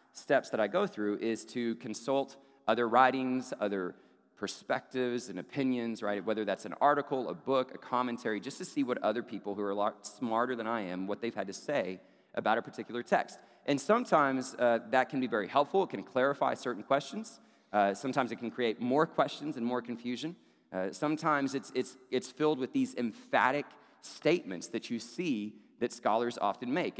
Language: English